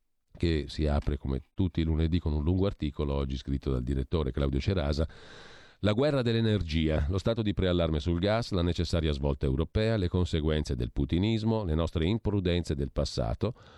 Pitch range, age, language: 75-100 Hz, 40-59, Italian